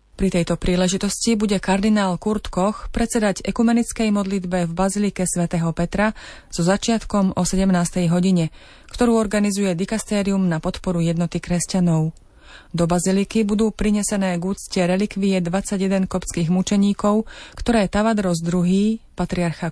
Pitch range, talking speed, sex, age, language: 175-205 Hz, 120 wpm, female, 30-49, Slovak